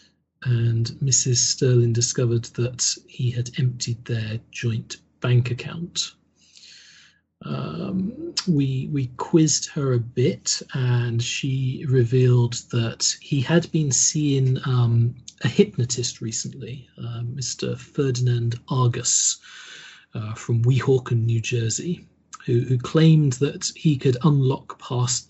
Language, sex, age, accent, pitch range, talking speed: English, male, 40-59, British, 120-155 Hz, 115 wpm